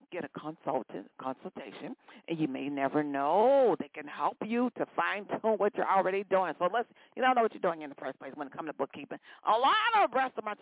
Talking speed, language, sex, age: 225 wpm, English, female, 50-69